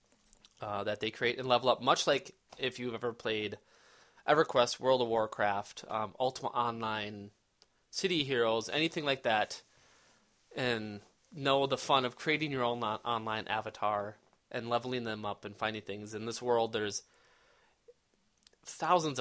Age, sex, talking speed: 20-39, male, 145 wpm